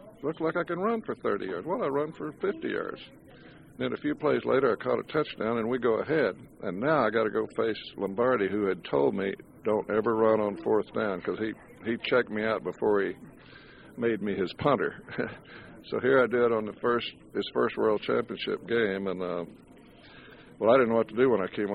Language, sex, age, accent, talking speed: English, male, 60-79, American, 225 wpm